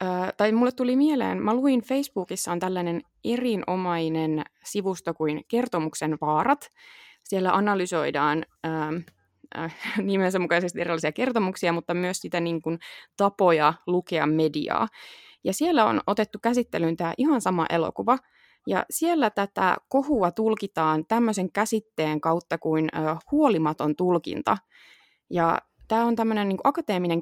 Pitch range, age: 165-230 Hz, 20-39